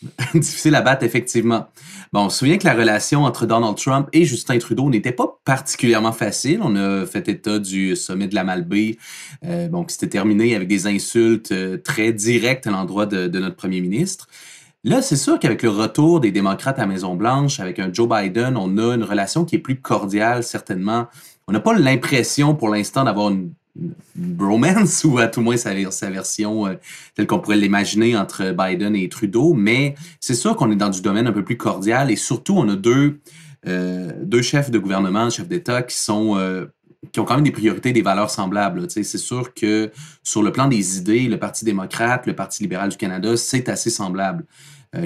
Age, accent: 30-49, Canadian